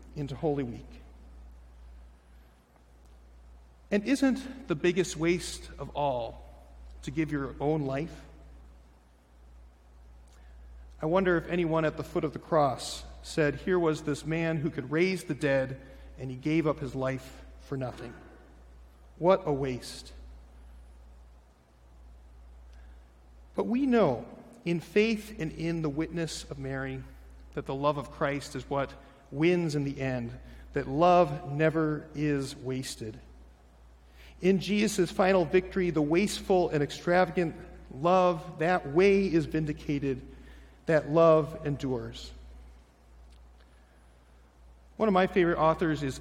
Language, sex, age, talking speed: English, male, 40-59, 125 wpm